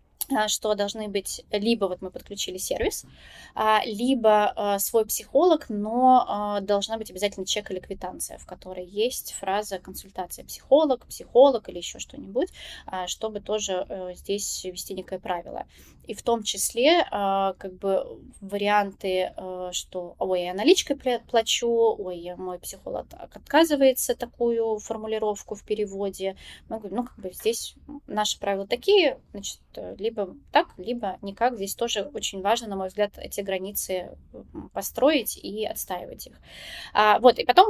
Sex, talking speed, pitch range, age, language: female, 130 wpm, 190-230 Hz, 20-39, Russian